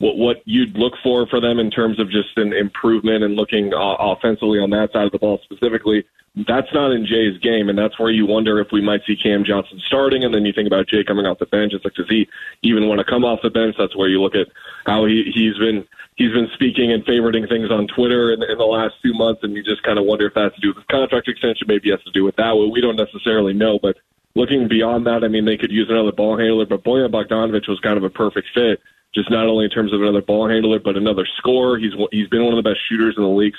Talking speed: 270 wpm